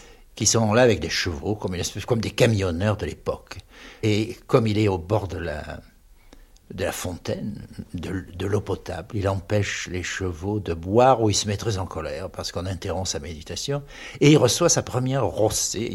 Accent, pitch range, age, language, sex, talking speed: French, 95-120 Hz, 60-79, French, male, 195 wpm